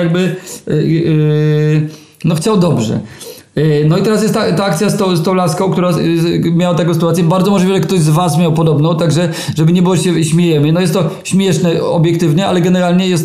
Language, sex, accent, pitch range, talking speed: Polish, male, native, 160-185 Hz, 185 wpm